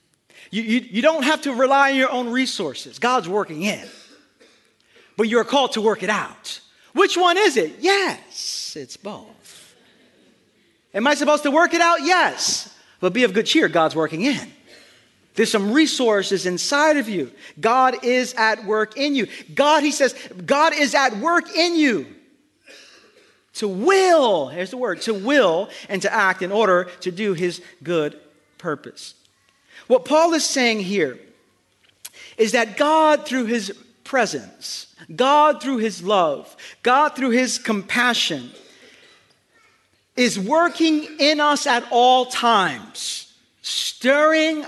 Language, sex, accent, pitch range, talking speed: English, male, American, 195-290 Hz, 145 wpm